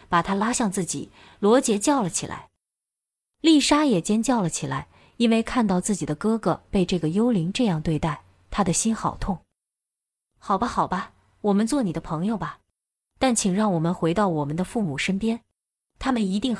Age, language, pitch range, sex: 20-39, Chinese, 180-245 Hz, female